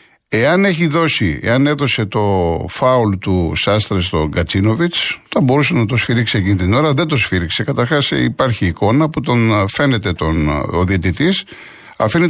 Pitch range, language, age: 105-150 Hz, Greek, 50-69